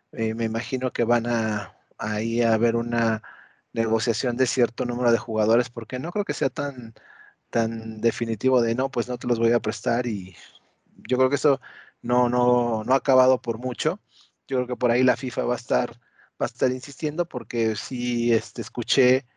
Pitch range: 115-130 Hz